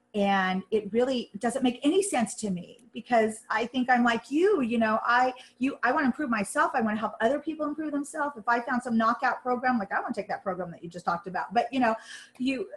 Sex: female